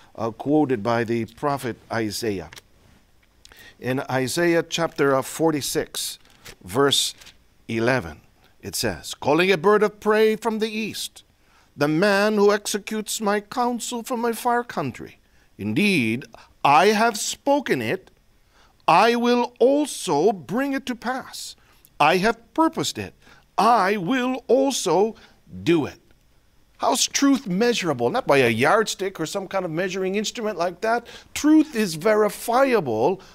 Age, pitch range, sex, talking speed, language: 50-69, 145-235 Hz, male, 130 wpm, Filipino